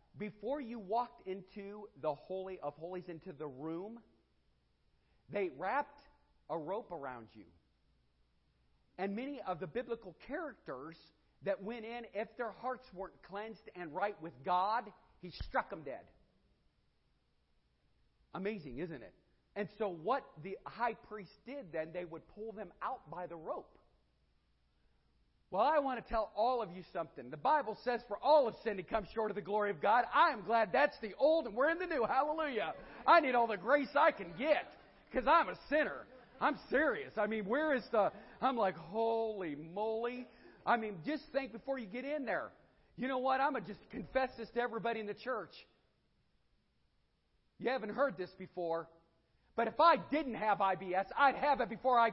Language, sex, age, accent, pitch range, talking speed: English, male, 40-59, American, 180-250 Hz, 180 wpm